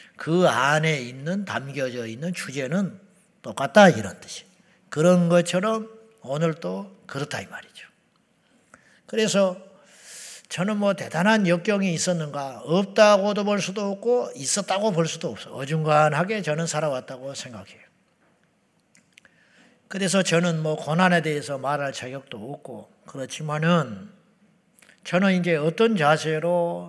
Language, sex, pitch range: Korean, male, 140-190 Hz